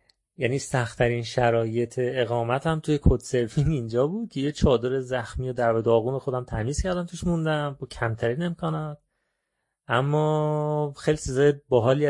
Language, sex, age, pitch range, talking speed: Persian, male, 30-49, 115-145 Hz, 130 wpm